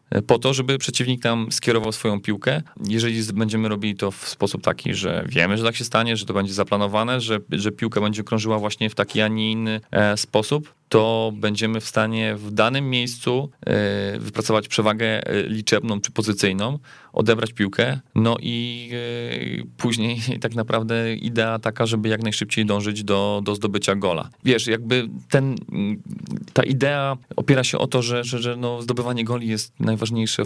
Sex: male